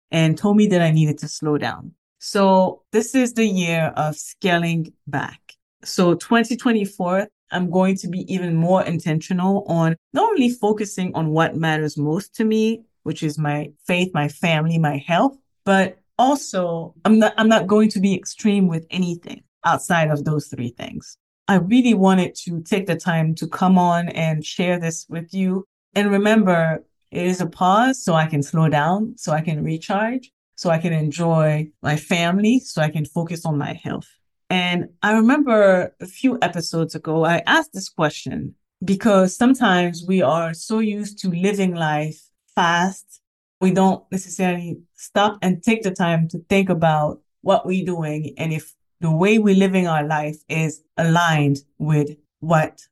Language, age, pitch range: English, 30-49, 160-195 Hz